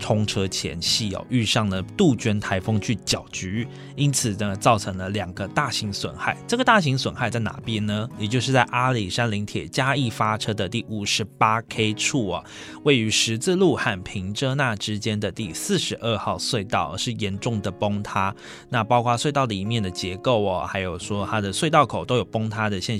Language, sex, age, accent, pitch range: Chinese, male, 20-39, native, 100-125 Hz